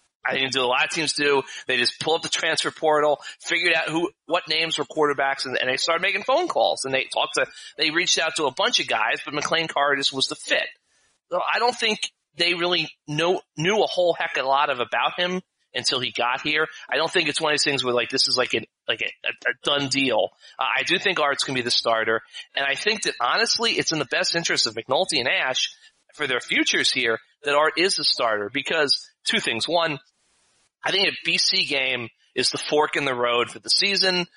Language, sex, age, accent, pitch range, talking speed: English, male, 30-49, American, 130-175 Hz, 240 wpm